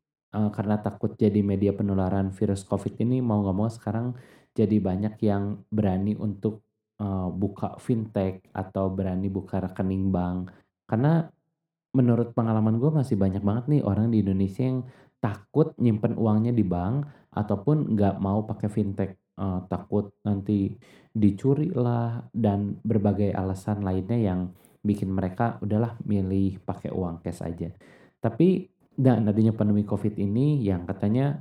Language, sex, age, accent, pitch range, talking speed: Indonesian, male, 20-39, native, 95-120 Hz, 140 wpm